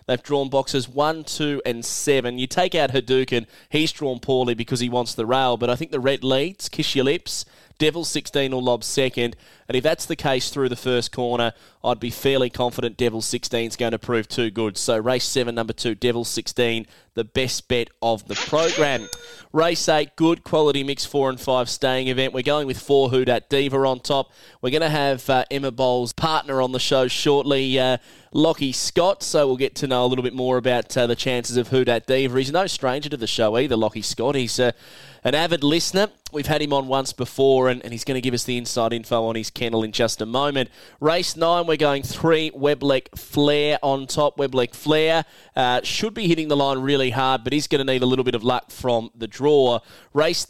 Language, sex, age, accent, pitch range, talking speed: English, male, 20-39, Australian, 125-145 Hz, 220 wpm